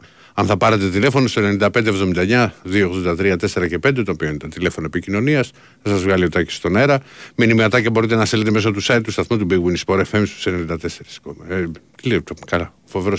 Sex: male